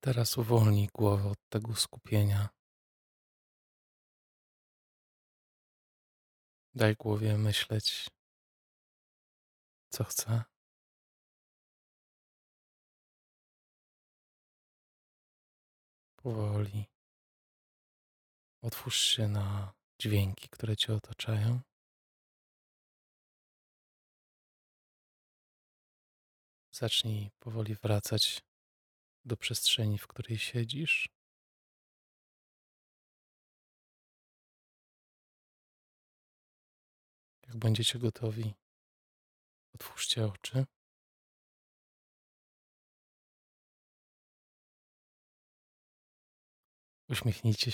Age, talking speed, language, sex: 20-39, 40 wpm, Polish, male